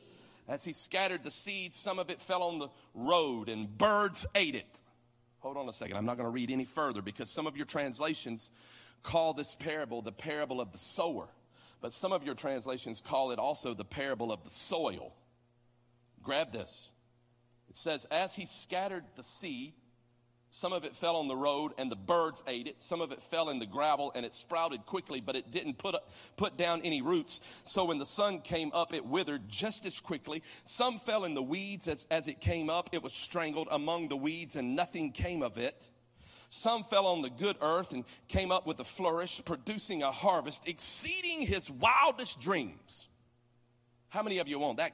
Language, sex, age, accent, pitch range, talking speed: English, male, 40-59, American, 120-175 Hz, 200 wpm